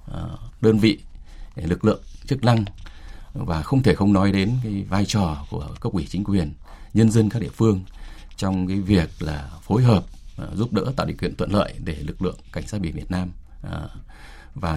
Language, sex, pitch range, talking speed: Vietnamese, male, 80-105 Hz, 190 wpm